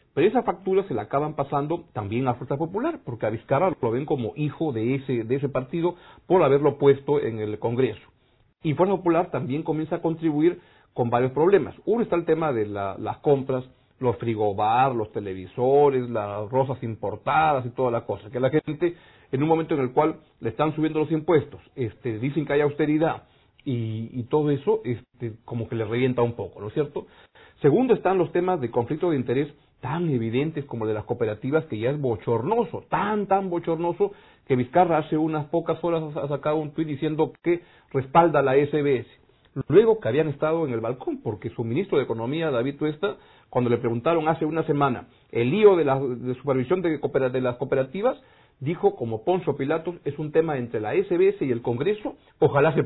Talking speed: 200 wpm